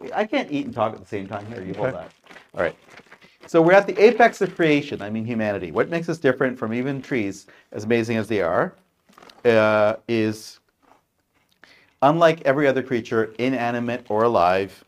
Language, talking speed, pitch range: English, 185 wpm, 110-135 Hz